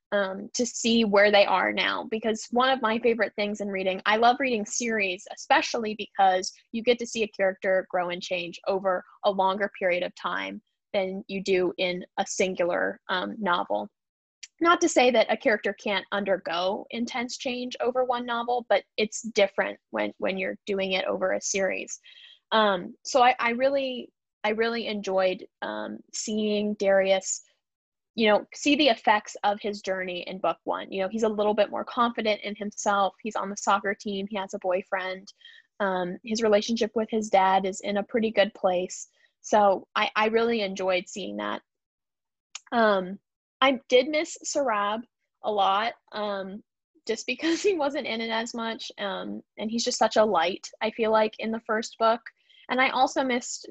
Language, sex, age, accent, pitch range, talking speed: English, female, 10-29, American, 195-235 Hz, 180 wpm